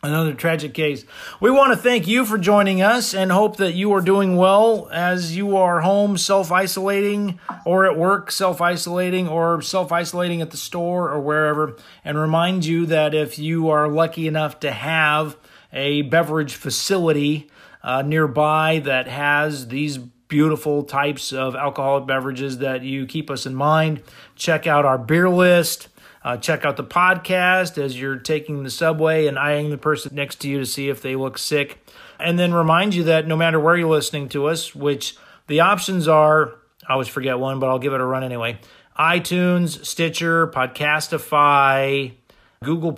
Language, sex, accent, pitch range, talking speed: English, male, American, 140-175 Hz, 170 wpm